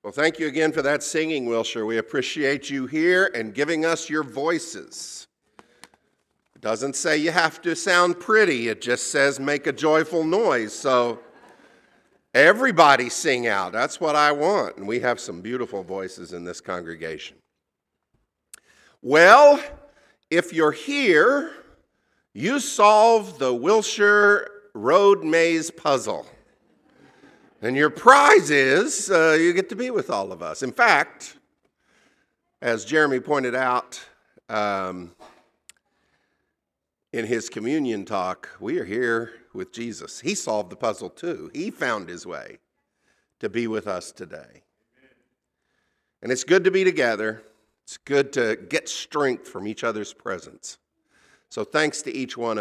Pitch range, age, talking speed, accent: 115-165 Hz, 50-69, 140 wpm, American